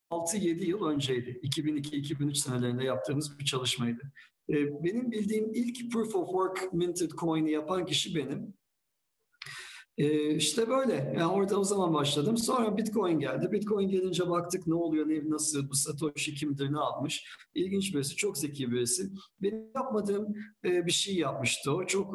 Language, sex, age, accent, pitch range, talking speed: Turkish, male, 50-69, native, 145-190 Hz, 150 wpm